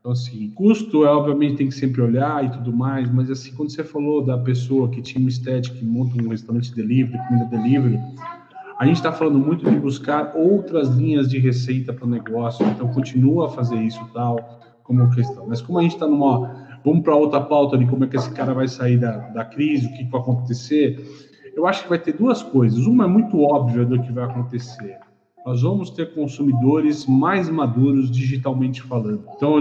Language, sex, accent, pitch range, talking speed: Portuguese, male, Brazilian, 125-145 Hz, 205 wpm